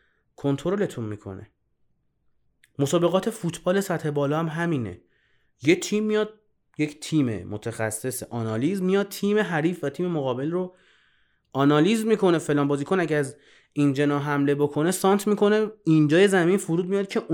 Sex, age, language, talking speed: male, 30-49, Persian, 130 wpm